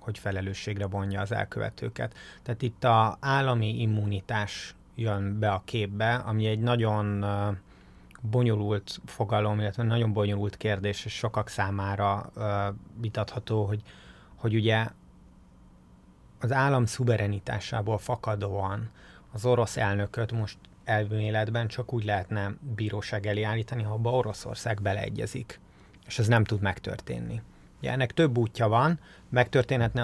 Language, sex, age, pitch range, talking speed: Hungarian, male, 30-49, 100-115 Hz, 120 wpm